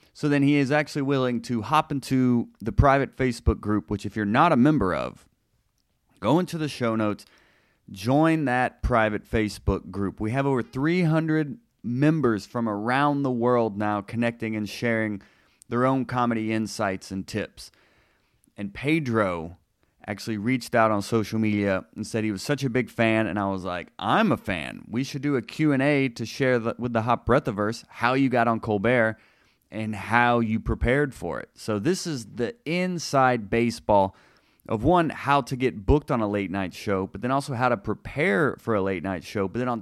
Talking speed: 190 wpm